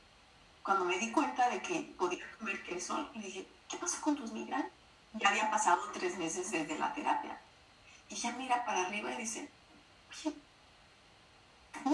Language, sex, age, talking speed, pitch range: Spanish, female, 30-49, 160 wpm, 200-280 Hz